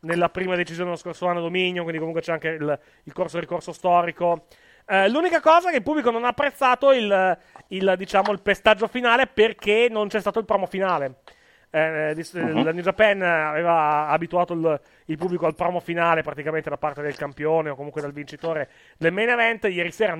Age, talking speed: 30-49, 200 wpm